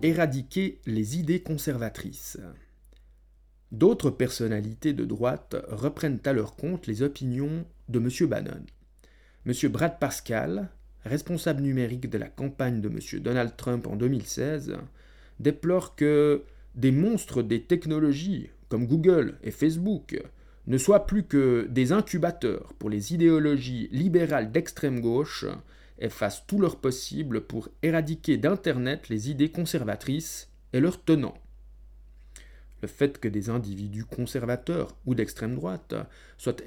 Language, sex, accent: French, male, French